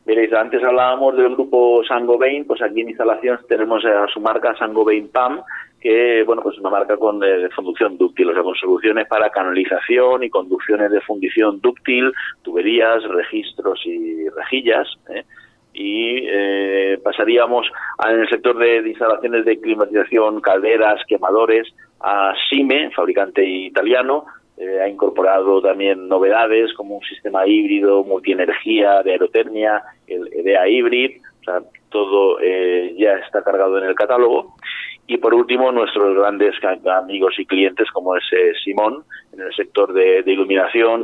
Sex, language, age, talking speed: male, Spanish, 40-59, 150 wpm